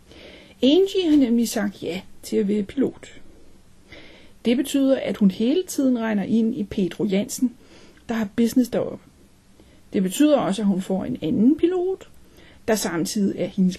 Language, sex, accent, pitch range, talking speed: Danish, female, native, 210-295 Hz, 160 wpm